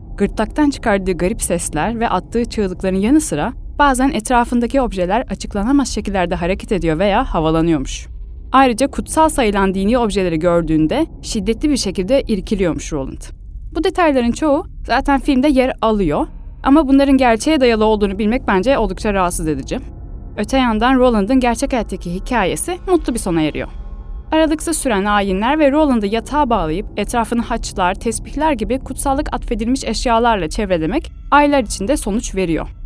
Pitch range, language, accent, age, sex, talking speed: 195-275 Hz, Turkish, native, 10-29, female, 135 wpm